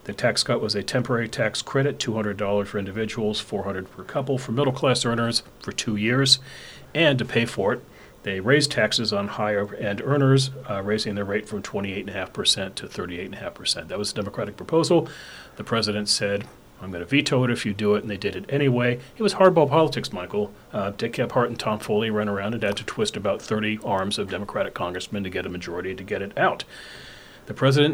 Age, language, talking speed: 40-59, English, 205 wpm